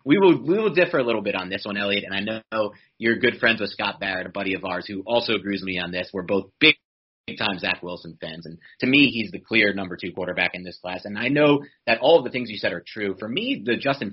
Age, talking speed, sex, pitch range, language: 30-49, 285 wpm, male, 95-120 Hz, English